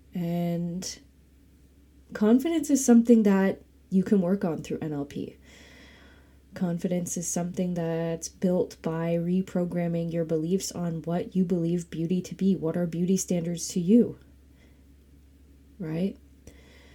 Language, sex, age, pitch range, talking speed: English, female, 20-39, 165-200 Hz, 120 wpm